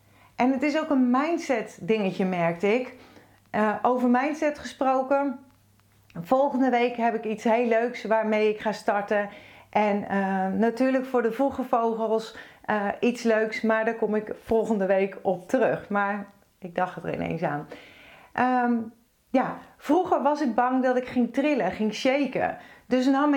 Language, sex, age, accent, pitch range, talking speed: Dutch, female, 40-59, Dutch, 210-260 Hz, 155 wpm